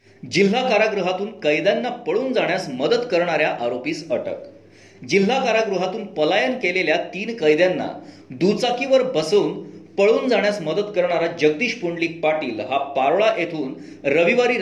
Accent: native